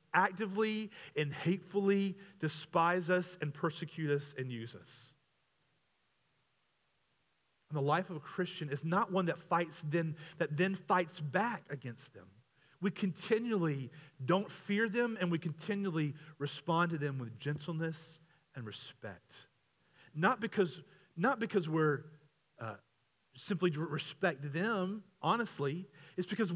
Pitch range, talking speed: 135-180 Hz, 130 wpm